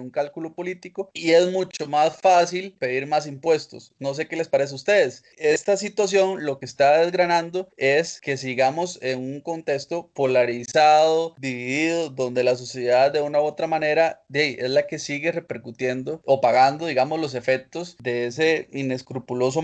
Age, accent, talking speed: 20-39, Colombian, 170 wpm